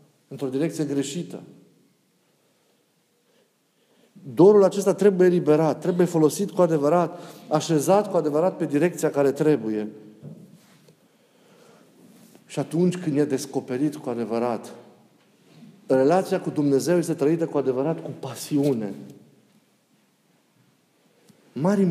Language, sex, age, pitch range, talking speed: Romanian, male, 50-69, 155-200 Hz, 95 wpm